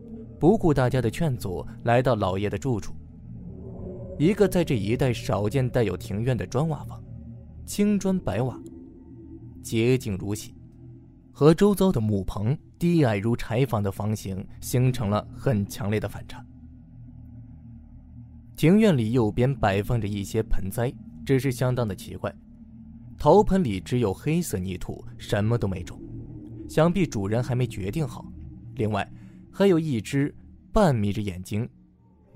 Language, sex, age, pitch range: Chinese, male, 20-39, 105-140 Hz